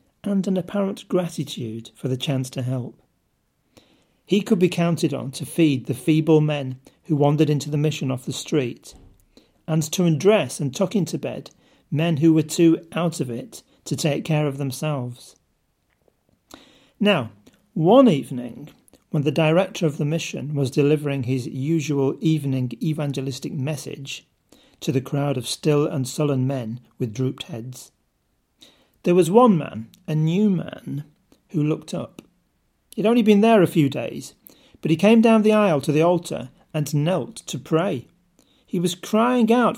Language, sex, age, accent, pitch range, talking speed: English, male, 40-59, British, 140-205 Hz, 160 wpm